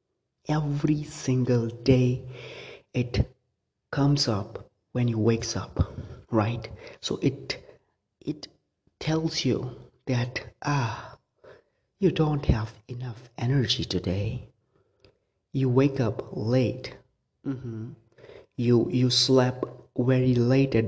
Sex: male